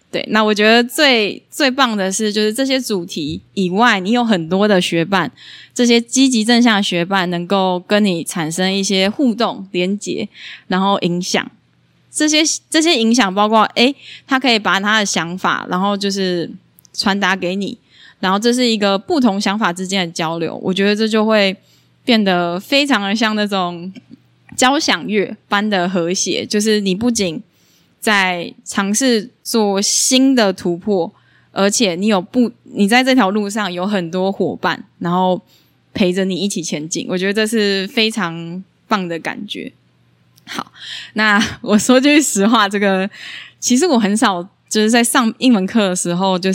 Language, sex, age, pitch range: Chinese, female, 20-39, 185-235 Hz